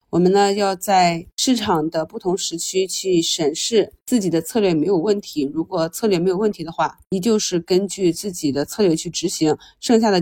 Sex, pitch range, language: female, 175-220 Hz, Chinese